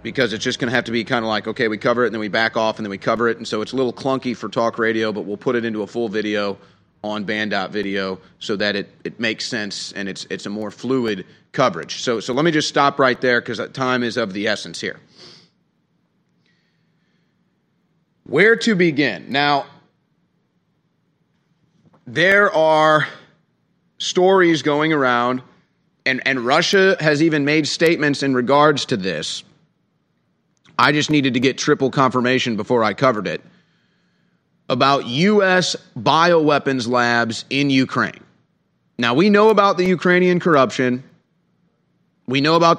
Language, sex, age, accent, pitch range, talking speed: English, male, 30-49, American, 120-155 Hz, 170 wpm